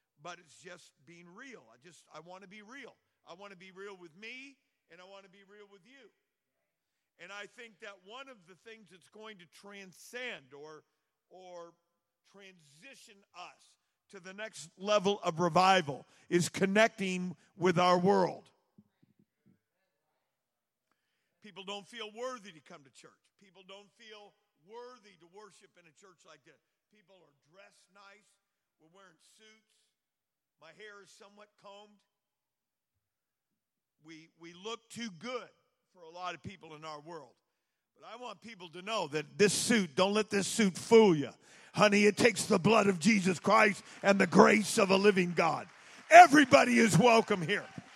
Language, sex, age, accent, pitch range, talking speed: English, male, 50-69, American, 180-230 Hz, 165 wpm